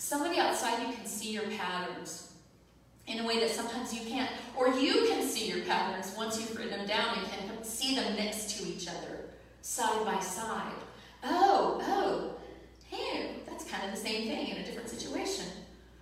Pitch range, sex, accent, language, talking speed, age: 175-230 Hz, female, American, English, 185 wpm, 40-59